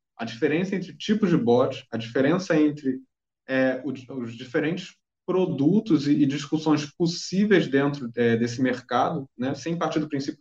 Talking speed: 135 wpm